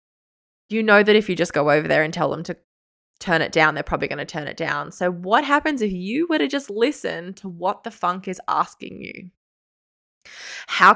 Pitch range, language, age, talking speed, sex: 170-220 Hz, English, 20-39, 220 wpm, female